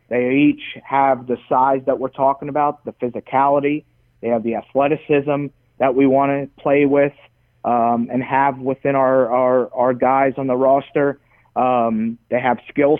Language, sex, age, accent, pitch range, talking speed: English, male, 30-49, American, 120-140 Hz, 165 wpm